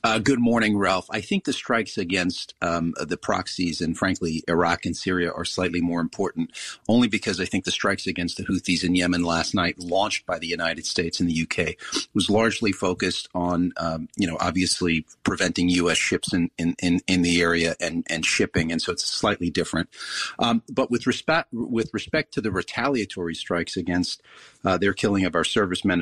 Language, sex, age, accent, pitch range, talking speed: English, male, 40-59, American, 85-105 Hz, 185 wpm